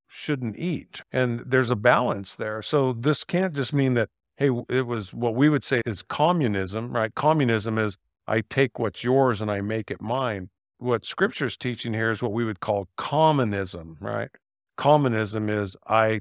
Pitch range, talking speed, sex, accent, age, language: 110-135 Hz, 180 wpm, male, American, 50-69, English